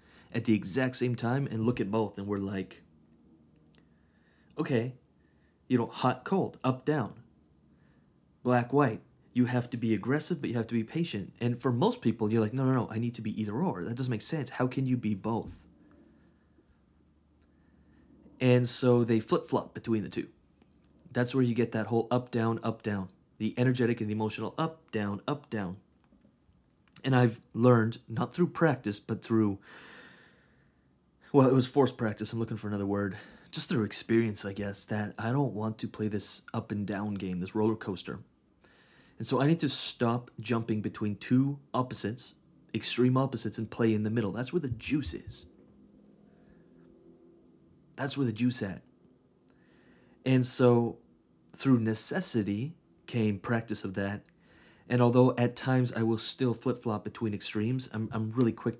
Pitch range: 100-125 Hz